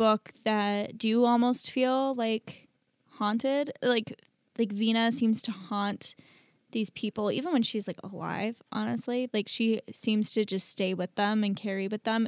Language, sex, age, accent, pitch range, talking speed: English, female, 10-29, American, 200-230 Hz, 160 wpm